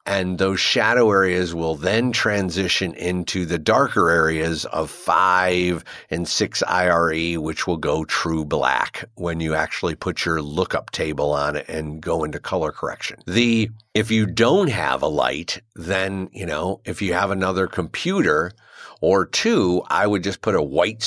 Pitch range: 90-115 Hz